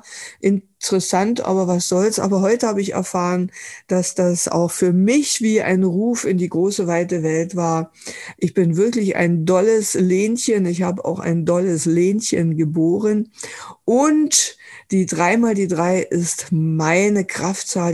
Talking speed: 145 wpm